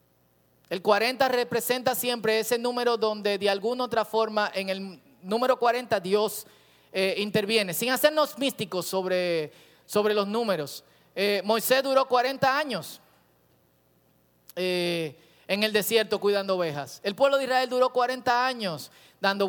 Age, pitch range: 30-49, 185-255 Hz